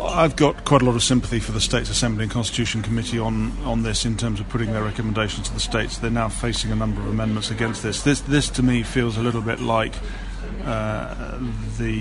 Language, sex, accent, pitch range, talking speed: English, male, British, 105-120 Hz, 230 wpm